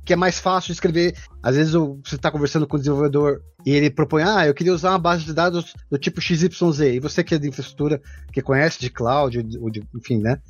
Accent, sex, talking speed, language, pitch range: Brazilian, male, 235 wpm, Portuguese, 135-180 Hz